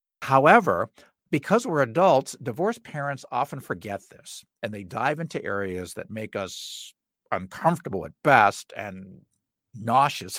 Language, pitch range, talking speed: English, 115-160 Hz, 125 wpm